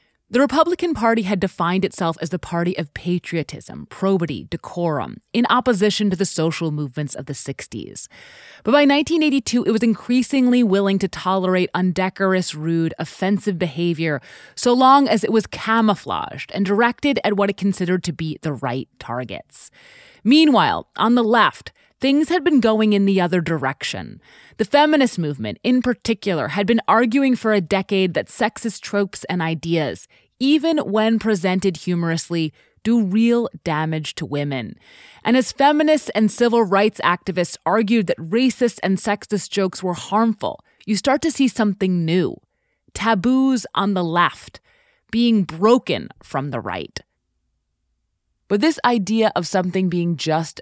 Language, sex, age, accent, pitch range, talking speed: English, female, 30-49, American, 170-230 Hz, 150 wpm